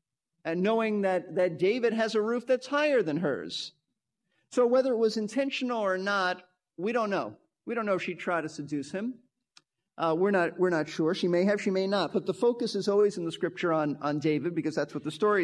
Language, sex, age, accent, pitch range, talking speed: English, male, 50-69, American, 160-215 Hz, 230 wpm